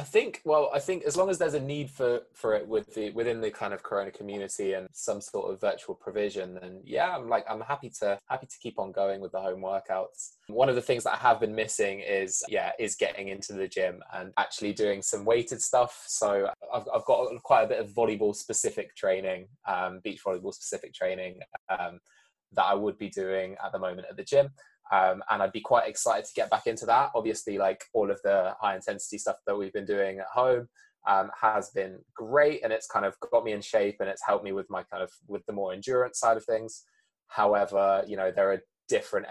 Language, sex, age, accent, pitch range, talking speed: English, male, 20-39, British, 95-135 Hz, 230 wpm